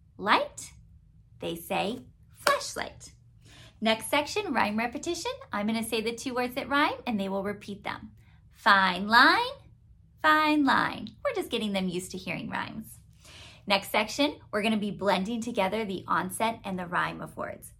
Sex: female